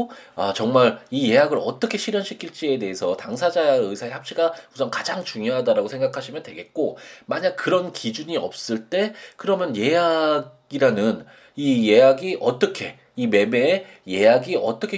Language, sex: Korean, male